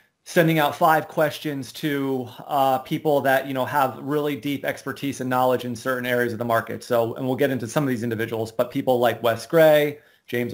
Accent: American